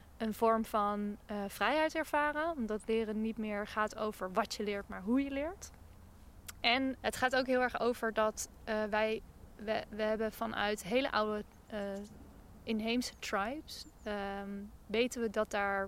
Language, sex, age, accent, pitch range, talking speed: Dutch, female, 20-39, Dutch, 205-235 Hz, 165 wpm